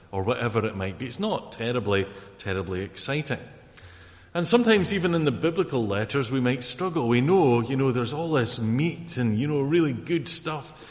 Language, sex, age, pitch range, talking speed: English, male, 30-49, 105-140 Hz, 185 wpm